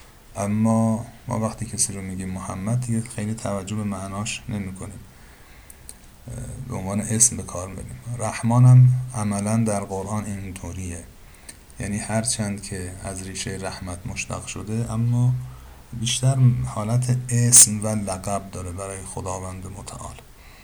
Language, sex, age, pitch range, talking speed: Persian, male, 50-69, 95-115 Hz, 120 wpm